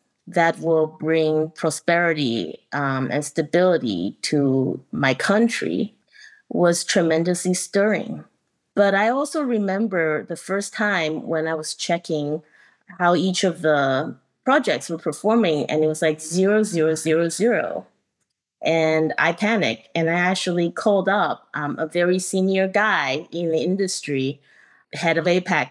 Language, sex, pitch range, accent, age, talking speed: English, female, 160-205 Hz, American, 30-49, 140 wpm